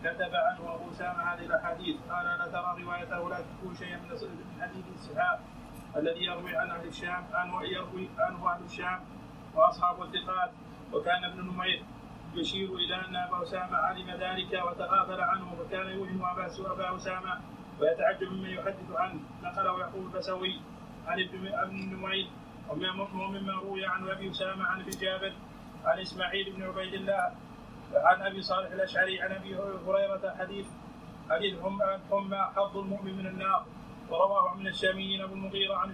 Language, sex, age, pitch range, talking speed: Arabic, male, 30-49, 185-200 Hz, 150 wpm